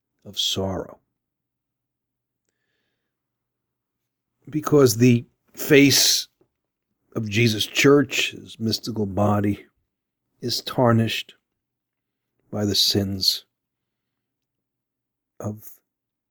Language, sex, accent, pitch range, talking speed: English, male, American, 95-115 Hz, 60 wpm